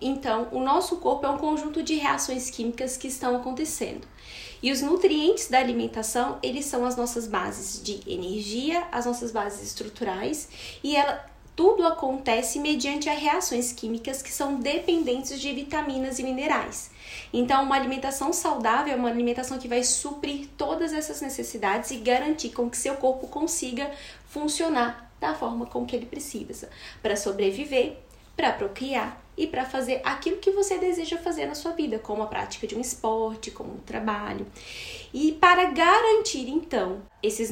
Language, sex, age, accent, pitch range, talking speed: Portuguese, female, 10-29, Brazilian, 235-310 Hz, 160 wpm